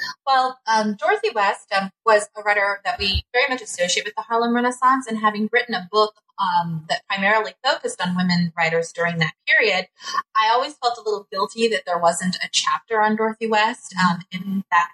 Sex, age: female, 30-49